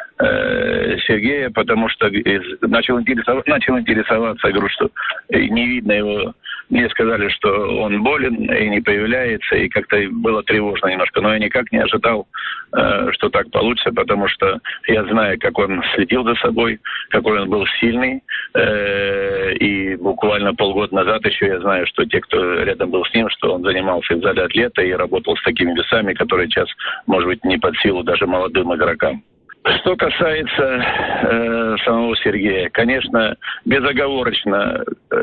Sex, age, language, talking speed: male, 50-69, Russian, 150 wpm